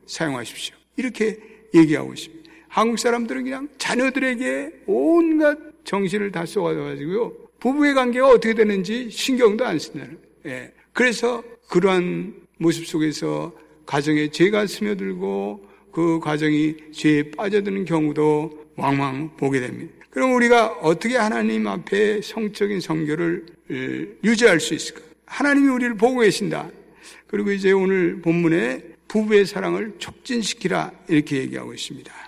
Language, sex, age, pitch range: Korean, male, 60-79, 165-240 Hz